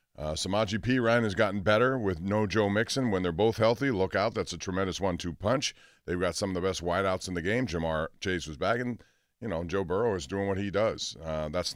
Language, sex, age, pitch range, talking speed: English, male, 40-59, 85-110 Hz, 240 wpm